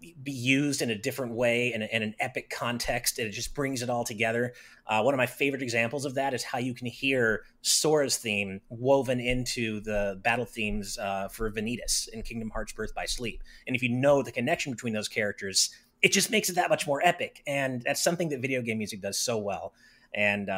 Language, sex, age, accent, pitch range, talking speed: English, male, 30-49, American, 115-145 Hz, 220 wpm